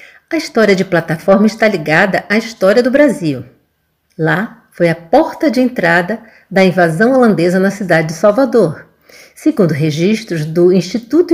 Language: Portuguese